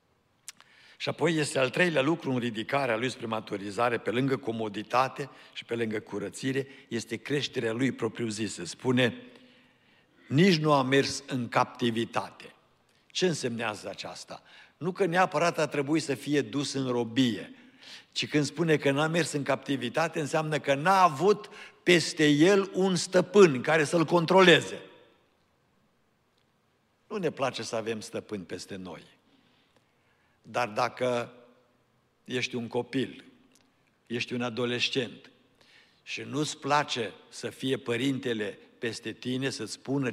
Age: 60-79